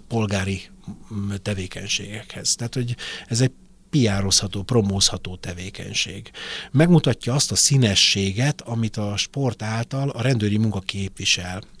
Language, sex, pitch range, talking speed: Hungarian, male, 95-120 Hz, 105 wpm